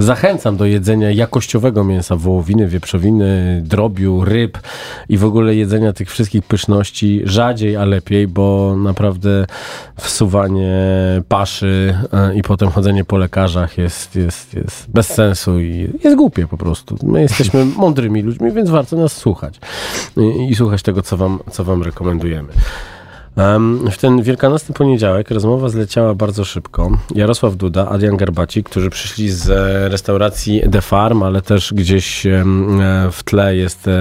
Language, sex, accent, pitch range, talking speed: Polish, male, native, 90-105 Hz, 140 wpm